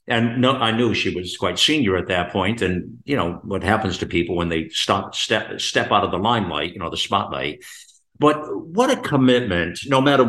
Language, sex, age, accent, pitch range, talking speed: English, male, 50-69, American, 105-130 Hz, 210 wpm